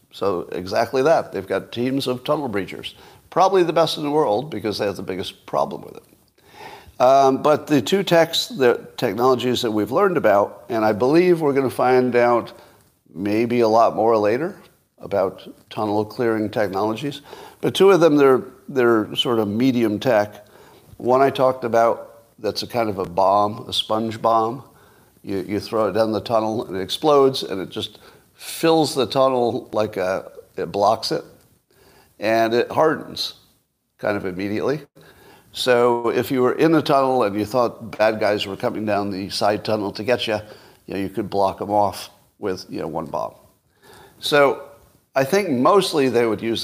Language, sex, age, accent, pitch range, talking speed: English, male, 50-69, American, 105-135 Hz, 180 wpm